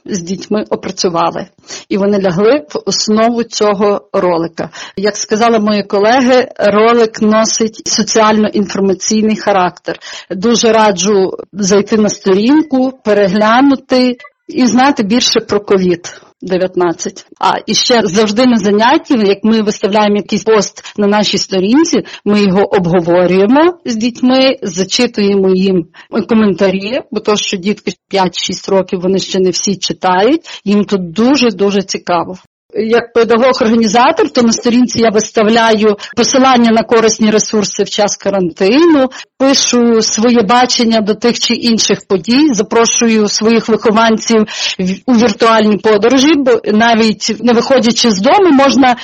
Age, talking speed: 40-59, 125 wpm